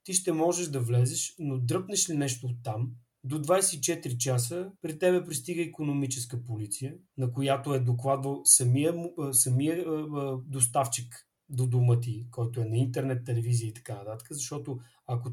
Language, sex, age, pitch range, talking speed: Bulgarian, male, 30-49, 125-165 Hz, 155 wpm